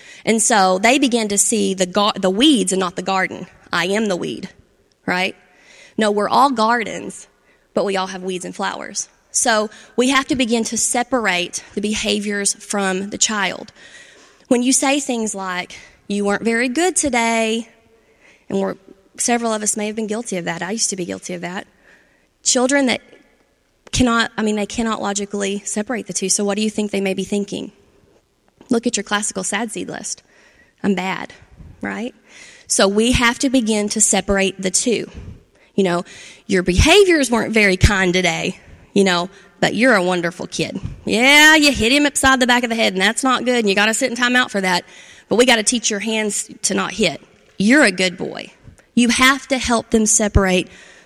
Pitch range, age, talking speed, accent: 195-245 Hz, 20-39, 195 wpm, American